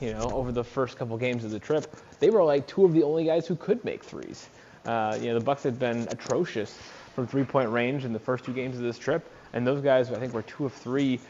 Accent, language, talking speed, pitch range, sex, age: American, English, 265 wpm, 110-130 Hz, male, 20-39